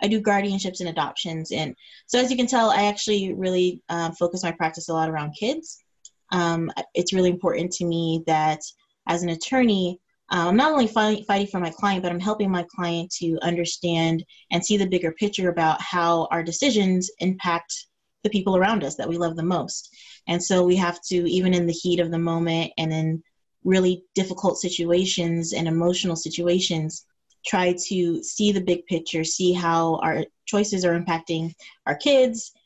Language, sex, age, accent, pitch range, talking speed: English, female, 20-39, American, 165-200 Hz, 185 wpm